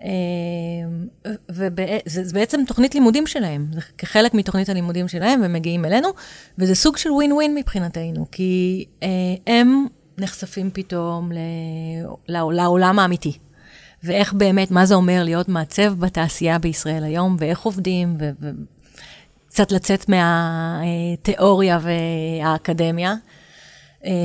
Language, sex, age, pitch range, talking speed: Hebrew, female, 30-49, 170-215 Hz, 115 wpm